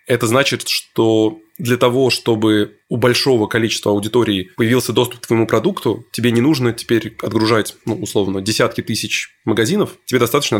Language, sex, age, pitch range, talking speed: Russian, male, 20-39, 105-120 Hz, 155 wpm